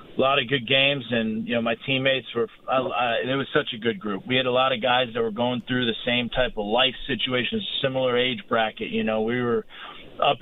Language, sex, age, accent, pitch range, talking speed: English, male, 40-59, American, 115-140 Hz, 250 wpm